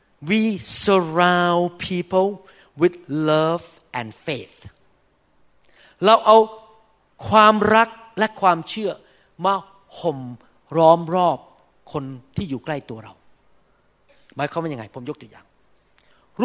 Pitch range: 145-205 Hz